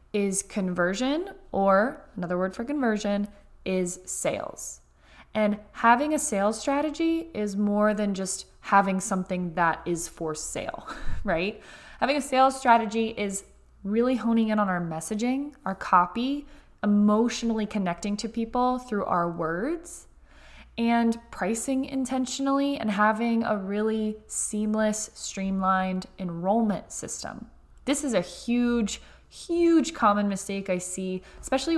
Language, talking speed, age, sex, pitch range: English, 125 wpm, 20-39, female, 190-240 Hz